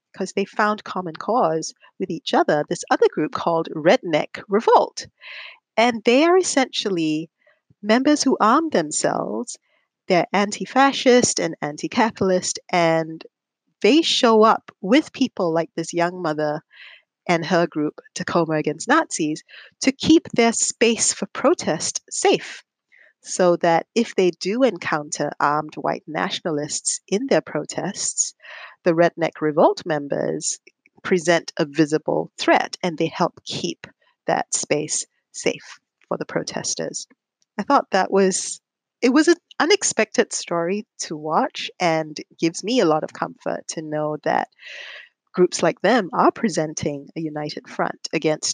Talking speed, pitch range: 135 wpm, 160-245 Hz